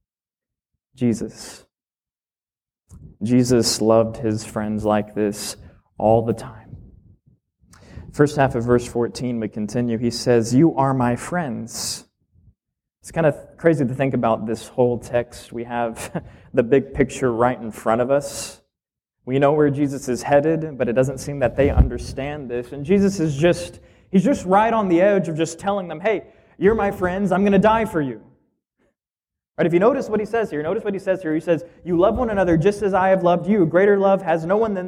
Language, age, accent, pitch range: English, 20-39, American, 120-195 Hz